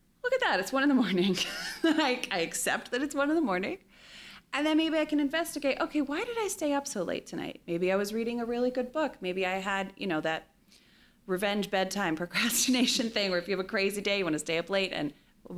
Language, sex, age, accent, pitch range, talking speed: English, female, 30-49, American, 180-260 Hz, 245 wpm